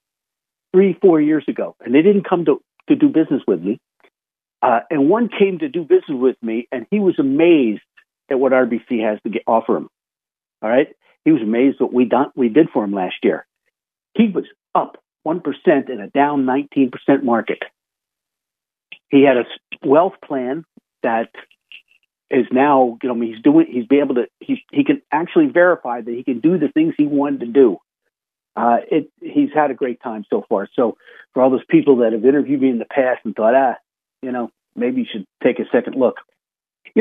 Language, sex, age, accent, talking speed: English, male, 60-79, American, 205 wpm